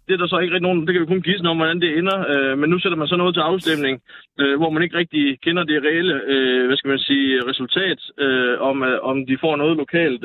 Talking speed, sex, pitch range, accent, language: 270 wpm, male, 145-180 Hz, native, Danish